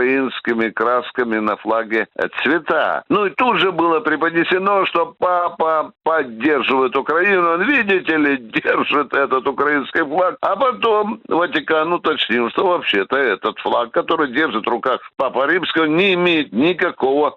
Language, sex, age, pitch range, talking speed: Russian, male, 60-79, 135-185 Hz, 135 wpm